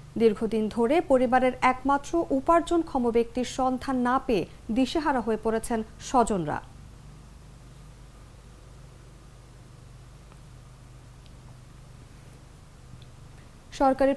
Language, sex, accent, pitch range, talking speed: English, female, Indian, 215-300 Hz, 60 wpm